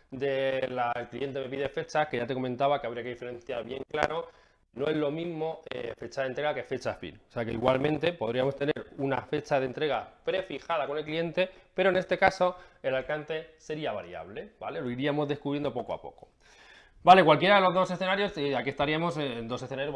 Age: 20-39